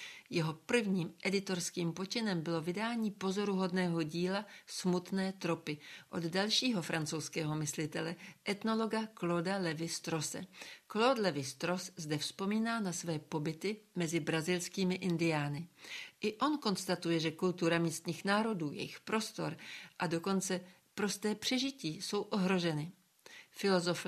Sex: female